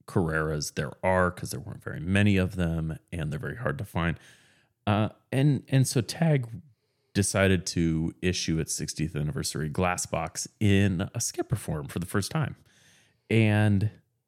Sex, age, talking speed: male, 30-49, 160 wpm